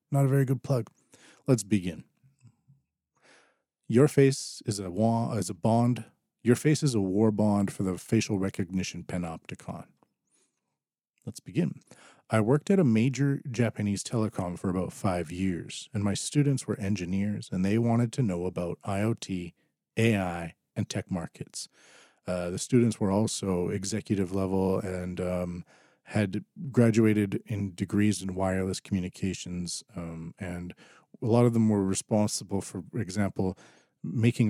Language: English